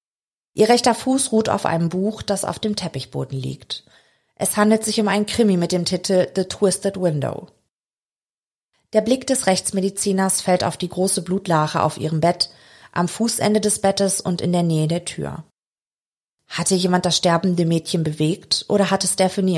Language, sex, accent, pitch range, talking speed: German, female, German, 170-200 Hz, 170 wpm